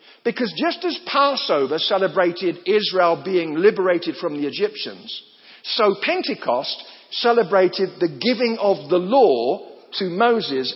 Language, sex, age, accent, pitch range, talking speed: English, male, 50-69, British, 190-290 Hz, 115 wpm